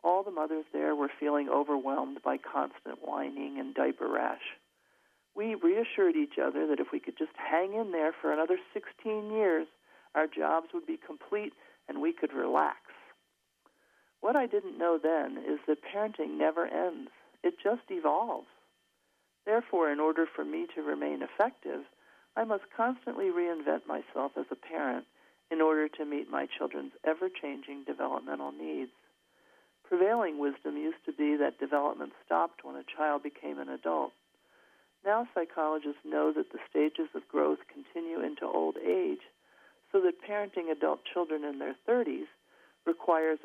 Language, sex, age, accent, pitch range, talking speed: English, male, 50-69, American, 140-225 Hz, 155 wpm